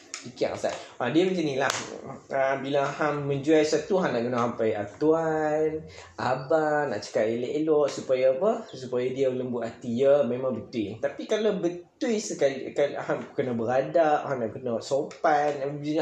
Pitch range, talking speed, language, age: 140-195 Hz, 155 wpm, Malay, 20-39